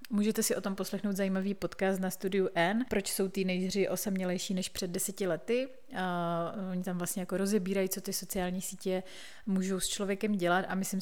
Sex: female